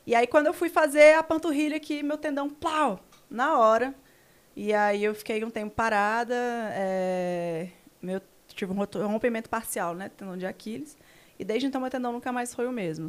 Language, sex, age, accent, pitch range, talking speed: Portuguese, female, 20-39, Brazilian, 195-240 Hz, 195 wpm